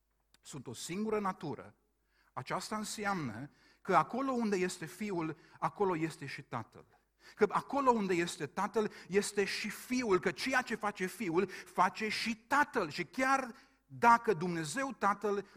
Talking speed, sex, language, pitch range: 140 wpm, male, Romanian, 125-195 Hz